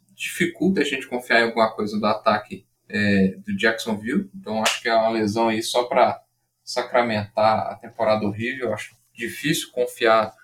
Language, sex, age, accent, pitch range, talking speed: Portuguese, male, 10-29, Brazilian, 110-125 Hz, 160 wpm